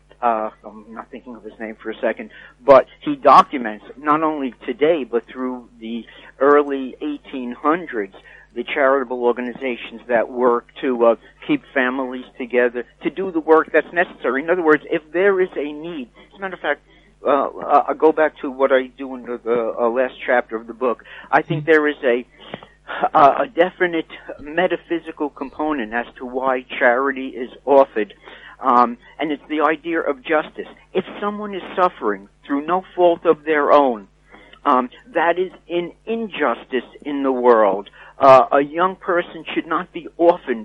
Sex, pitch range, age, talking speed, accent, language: male, 125-170 Hz, 50-69, 170 wpm, American, English